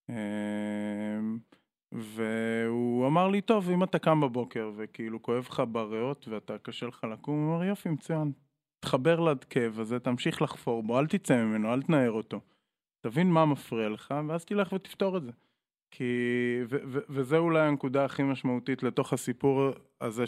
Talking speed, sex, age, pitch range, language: 160 wpm, male, 20-39, 120-150 Hz, Hebrew